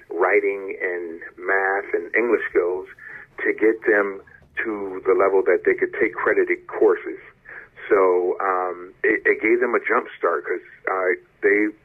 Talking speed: 150 wpm